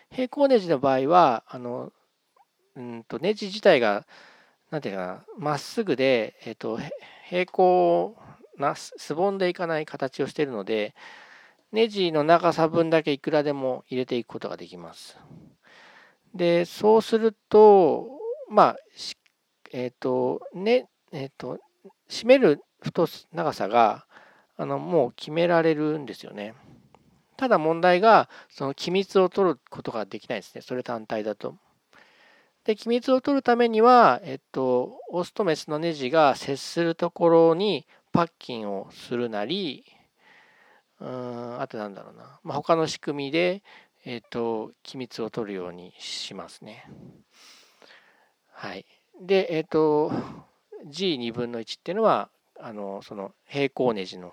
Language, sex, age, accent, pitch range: Japanese, male, 40-59, native, 120-185 Hz